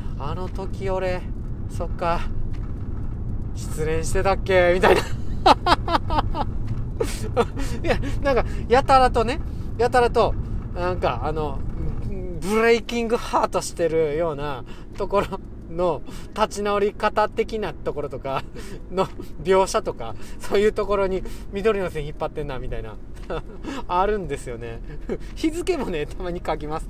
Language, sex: Japanese, male